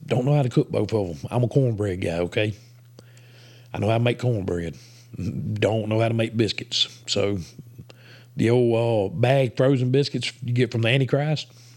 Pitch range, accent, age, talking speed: 110-130 Hz, American, 50-69, 190 wpm